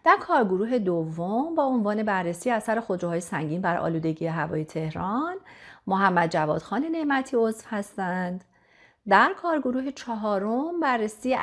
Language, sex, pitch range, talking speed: Persian, female, 165-245 Hz, 115 wpm